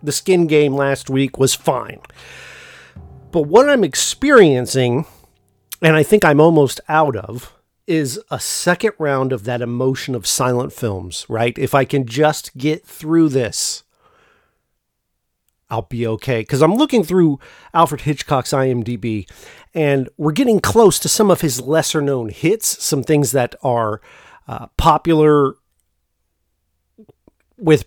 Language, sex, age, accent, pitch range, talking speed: English, male, 40-59, American, 125-160 Hz, 140 wpm